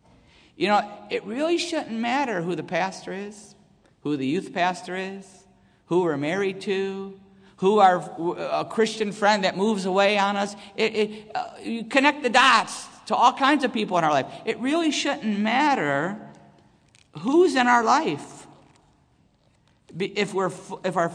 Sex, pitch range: male, 170-220 Hz